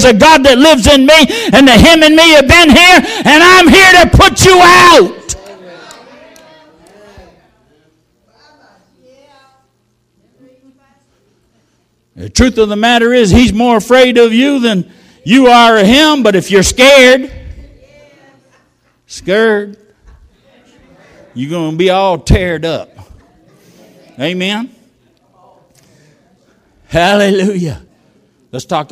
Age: 60-79